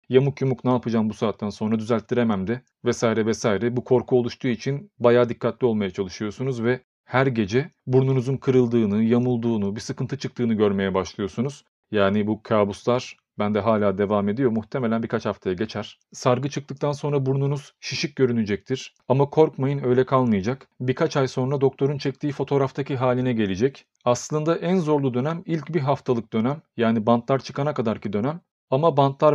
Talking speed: 150 wpm